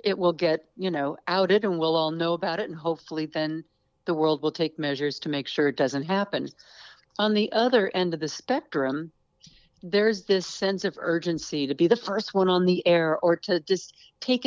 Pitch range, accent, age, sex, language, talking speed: 155-195 Hz, American, 60-79, female, English, 205 wpm